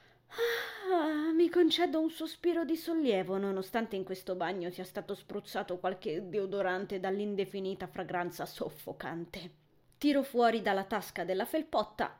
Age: 20-39